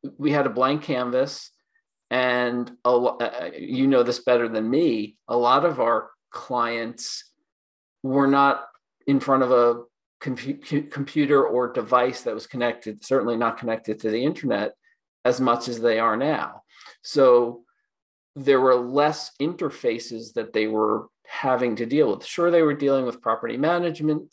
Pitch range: 120-150 Hz